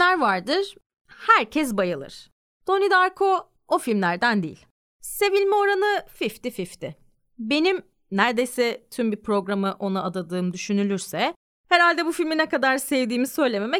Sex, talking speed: female, 115 wpm